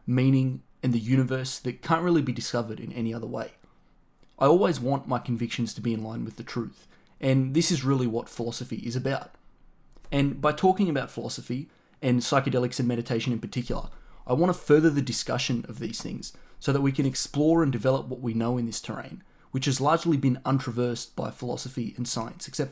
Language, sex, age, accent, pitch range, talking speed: English, male, 20-39, Australian, 120-140 Hz, 200 wpm